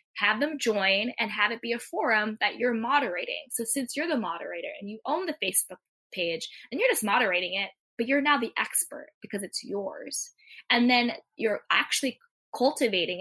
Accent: American